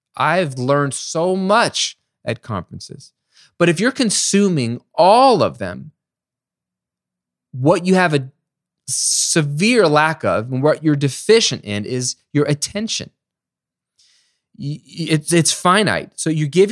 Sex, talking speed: male, 120 wpm